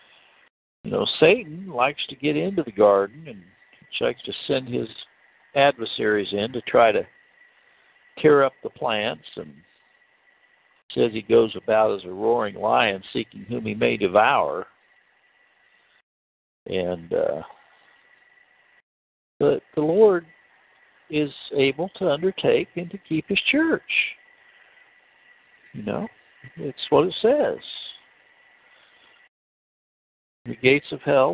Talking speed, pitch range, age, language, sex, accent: 120 wpm, 105-175 Hz, 60-79, English, male, American